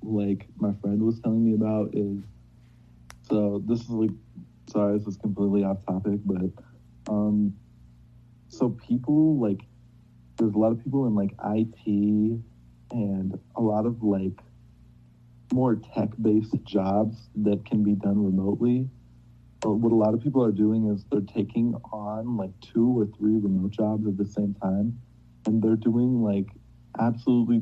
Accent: American